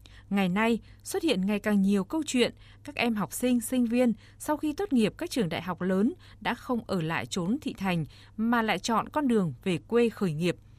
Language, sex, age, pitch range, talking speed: Vietnamese, female, 20-39, 180-235 Hz, 220 wpm